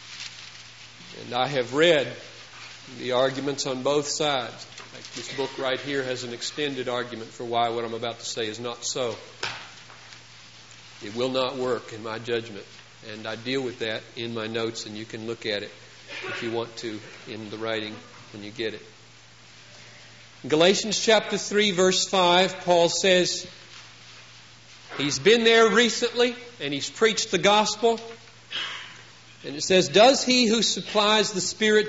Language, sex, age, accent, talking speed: English, male, 40-59, American, 160 wpm